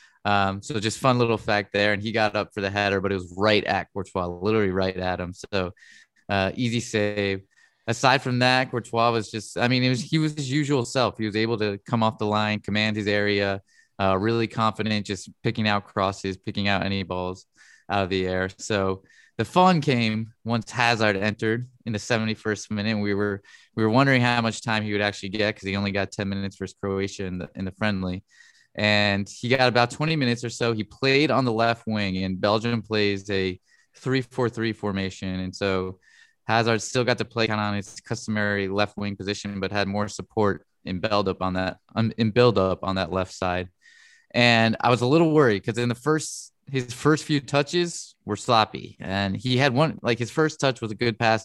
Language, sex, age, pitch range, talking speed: English, male, 20-39, 100-120 Hz, 210 wpm